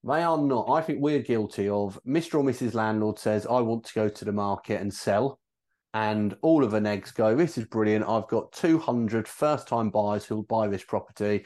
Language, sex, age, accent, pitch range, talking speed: English, male, 30-49, British, 105-125 Hz, 210 wpm